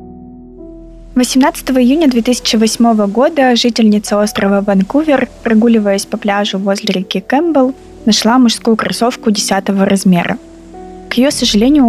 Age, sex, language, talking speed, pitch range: 20-39, female, Russian, 105 wpm, 195-230 Hz